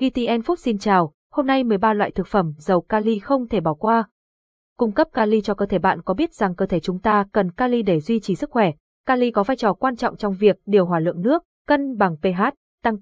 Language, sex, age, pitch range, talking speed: Vietnamese, female, 20-39, 190-240 Hz, 245 wpm